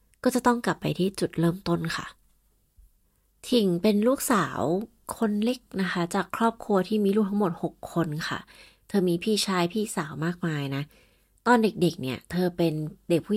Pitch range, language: 155-195 Hz, Thai